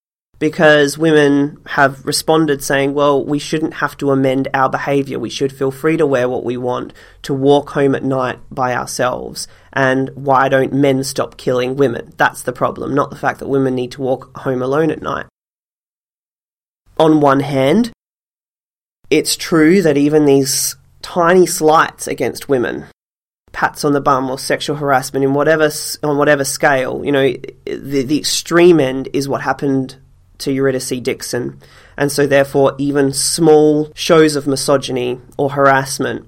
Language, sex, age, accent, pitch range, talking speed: English, male, 20-39, Australian, 130-150 Hz, 160 wpm